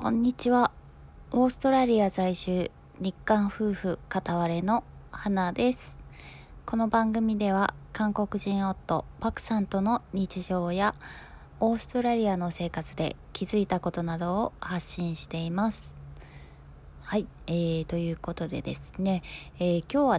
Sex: female